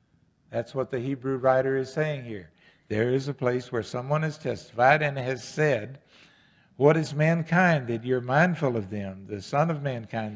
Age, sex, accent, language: 60-79, male, American, English